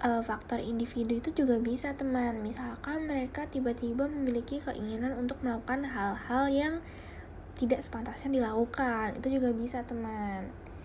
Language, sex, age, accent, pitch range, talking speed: Indonesian, female, 10-29, native, 215-270 Hz, 120 wpm